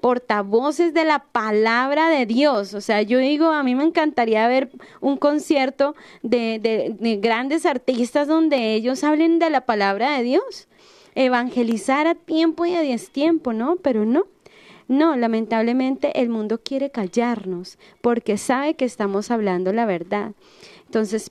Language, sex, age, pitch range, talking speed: Spanish, female, 20-39, 225-280 Hz, 150 wpm